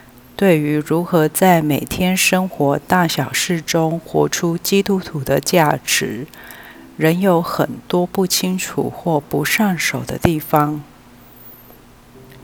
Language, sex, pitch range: Chinese, female, 140-175 Hz